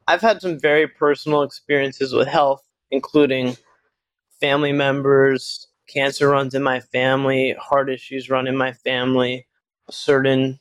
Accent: American